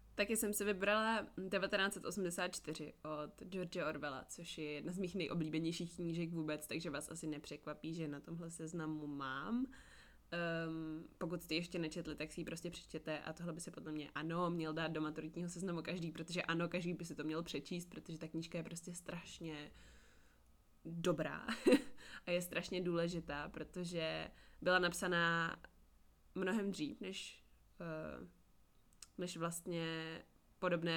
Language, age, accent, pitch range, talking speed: Czech, 20-39, native, 160-180 Hz, 145 wpm